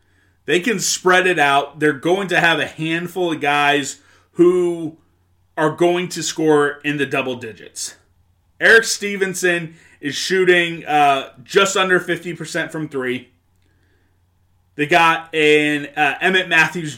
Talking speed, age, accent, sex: 130 wpm, 30-49, American, male